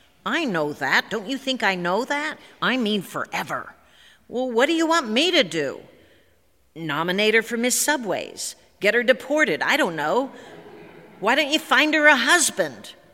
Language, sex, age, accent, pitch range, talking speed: English, female, 50-69, American, 175-245 Hz, 175 wpm